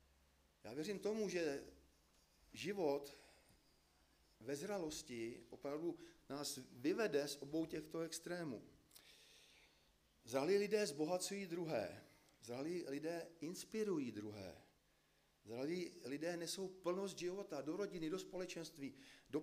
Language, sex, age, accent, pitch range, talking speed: Czech, male, 40-59, native, 135-165 Hz, 100 wpm